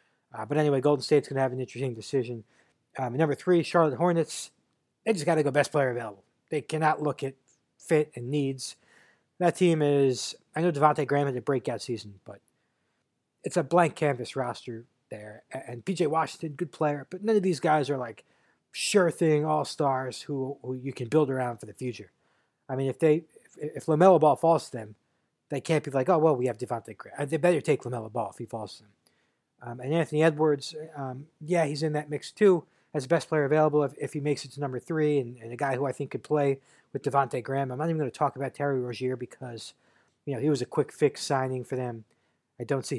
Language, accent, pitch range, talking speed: English, American, 125-155 Hz, 230 wpm